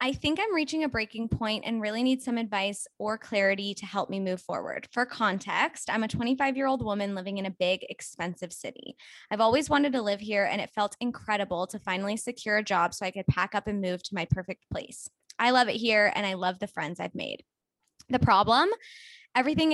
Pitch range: 195-245 Hz